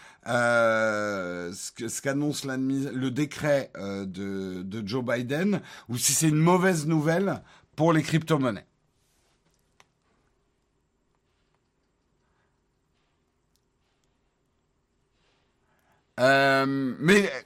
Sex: male